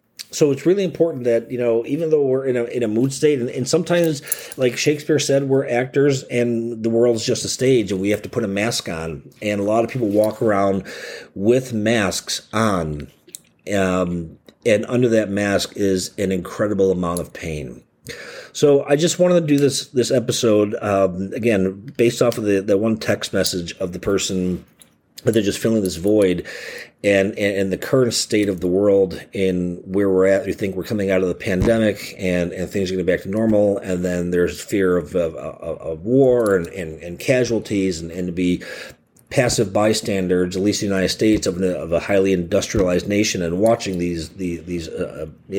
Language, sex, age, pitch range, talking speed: English, male, 40-59, 95-120 Hz, 205 wpm